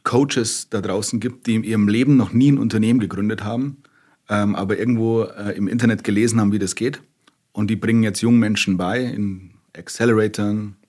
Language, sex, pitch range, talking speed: German, male, 100-120 Hz, 185 wpm